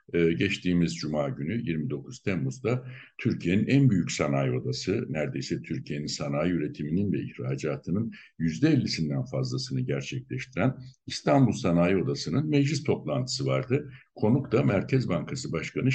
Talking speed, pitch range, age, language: 120 wpm, 80-130 Hz, 60-79, Turkish